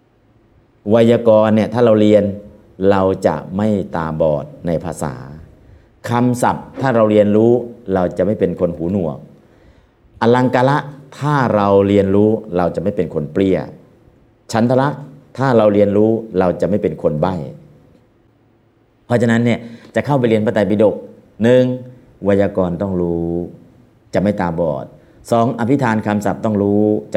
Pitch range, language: 90-115 Hz, Thai